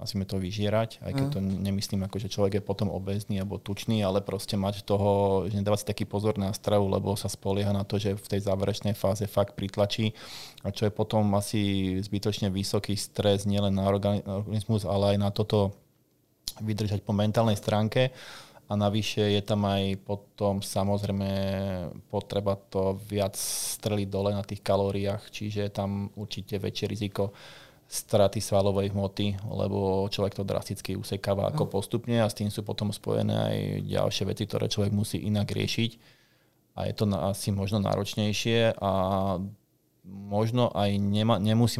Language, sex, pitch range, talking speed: Slovak, male, 100-110 Hz, 160 wpm